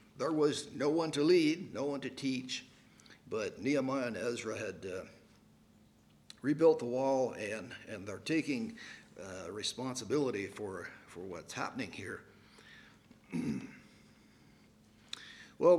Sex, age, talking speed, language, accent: male, 60-79, 120 wpm, English, American